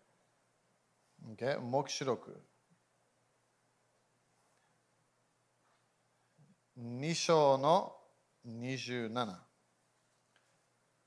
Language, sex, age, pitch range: Japanese, male, 40-59, 145-195 Hz